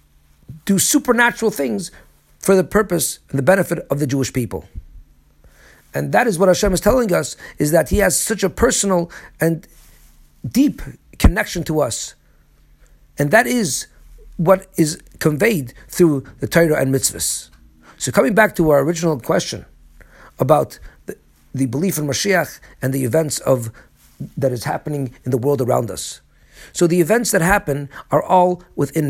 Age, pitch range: 50-69, 135-190 Hz